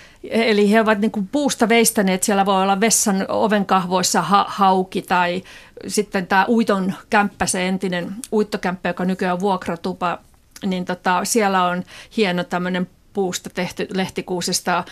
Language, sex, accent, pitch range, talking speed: Finnish, female, native, 185-220 Hz, 140 wpm